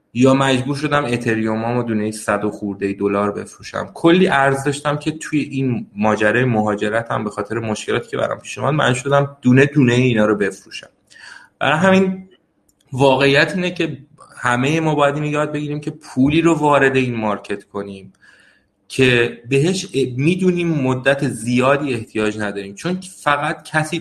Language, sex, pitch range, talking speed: Persian, male, 115-145 Hz, 150 wpm